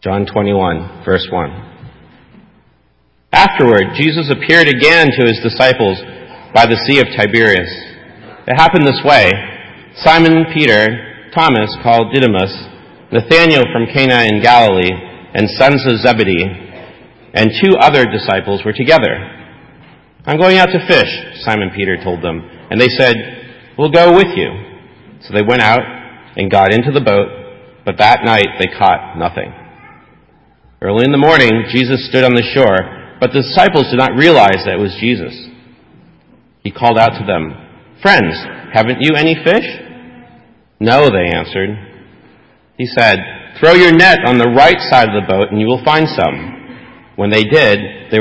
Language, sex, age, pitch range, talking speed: English, male, 40-59, 100-140 Hz, 155 wpm